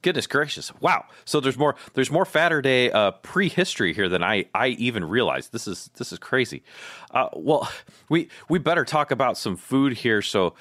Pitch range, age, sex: 100-155 Hz, 30-49, male